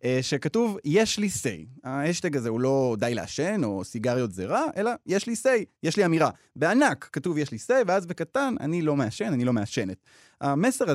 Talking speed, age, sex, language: 190 wpm, 20-39, male, Hebrew